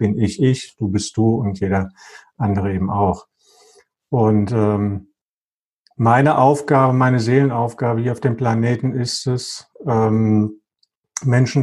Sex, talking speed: male, 130 wpm